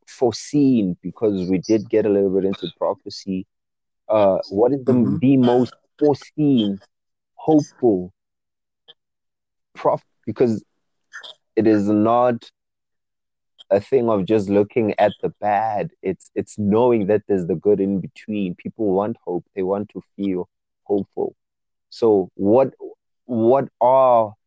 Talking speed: 130 wpm